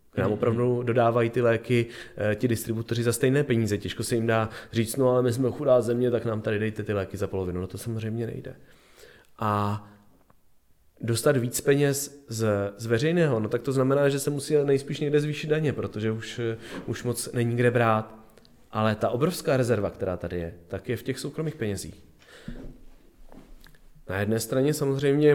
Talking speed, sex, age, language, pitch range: 180 wpm, male, 30-49, Czech, 100-125 Hz